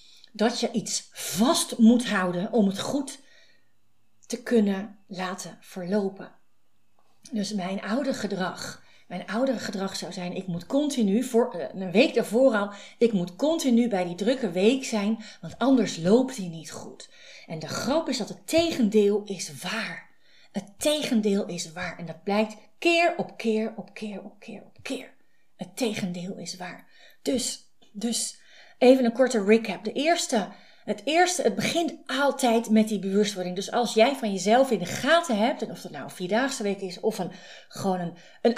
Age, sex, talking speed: 30-49, female, 175 wpm